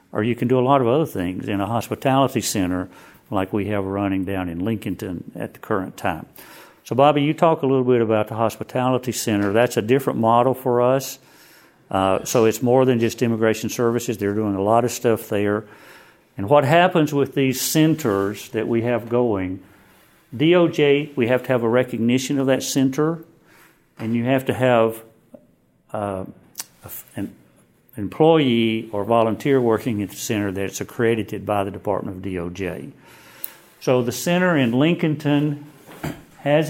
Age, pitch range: 50-69, 105-135 Hz